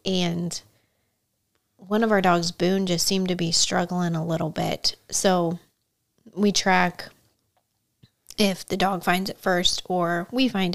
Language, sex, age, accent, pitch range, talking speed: English, female, 30-49, American, 165-190 Hz, 145 wpm